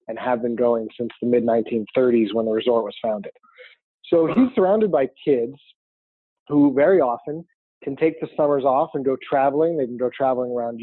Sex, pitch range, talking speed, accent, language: male, 120-155 Hz, 185 wpm, American, English